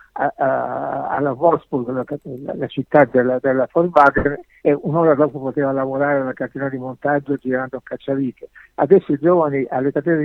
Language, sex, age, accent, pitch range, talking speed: Italian, male, 60-79, native, 135-160 Hz, 165 wpm